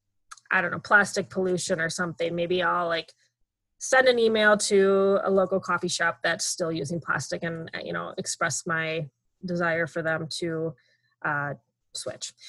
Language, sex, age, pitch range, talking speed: English, female, 20-39, 170-205 Hz, 160 wpm